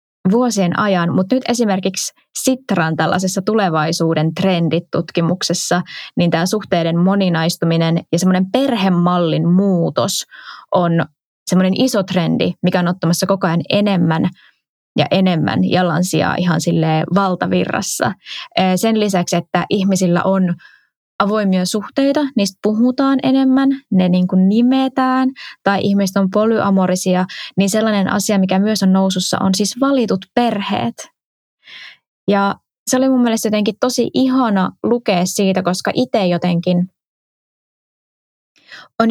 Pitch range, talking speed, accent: 180-220 Hz, 115 wpm, native